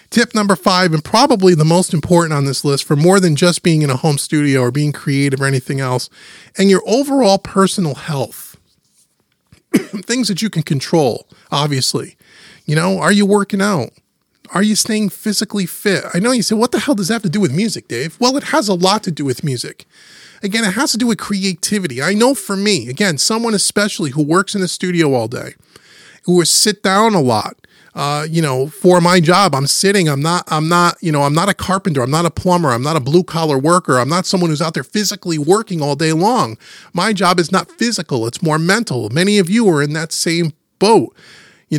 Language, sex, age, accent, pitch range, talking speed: English, male, 30-49, American, 150-200 Hz, 225 wpm